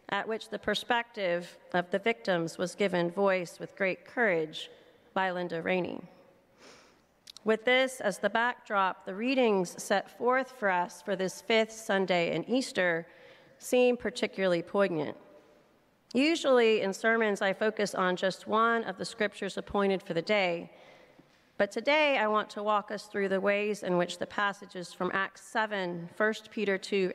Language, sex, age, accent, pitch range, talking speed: English, female, 40-59, American, 180-220 Hz, 155 wpm